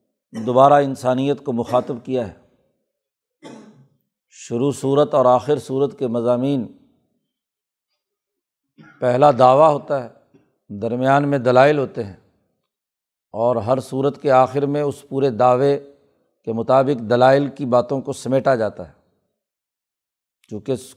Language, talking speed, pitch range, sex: Urdu, 115 wpm, 125-145 Hz, male